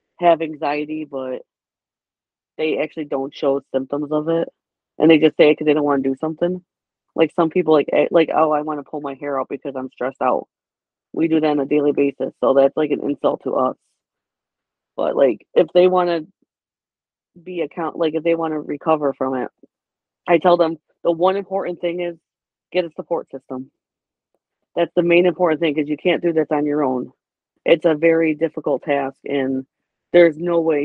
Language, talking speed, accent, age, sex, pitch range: English, 200 wpm, American, 30-49, female, 145-170 Hz